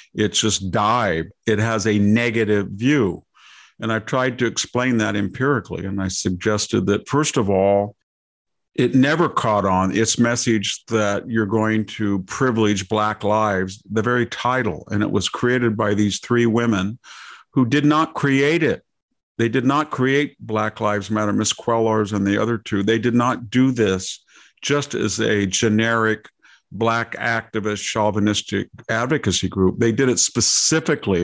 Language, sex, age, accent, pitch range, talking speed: English, male, 50-69, American, 105-125 Hz, 160 wpm